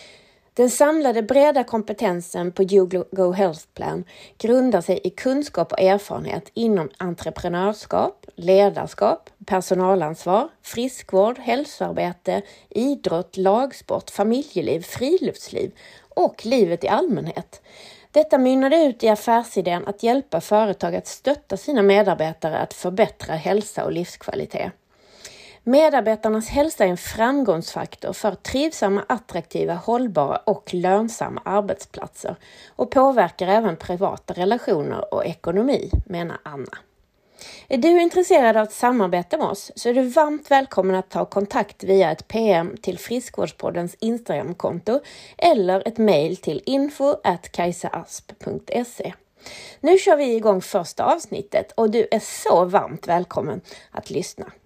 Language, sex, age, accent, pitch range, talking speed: Swedish, female, 30-49, native, 185-245 Hz, 115 wpm